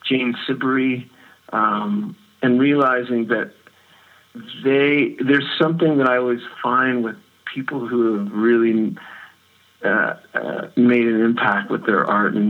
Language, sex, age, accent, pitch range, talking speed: English, male, 50-69, American, 110-130 Hz, 130 wpm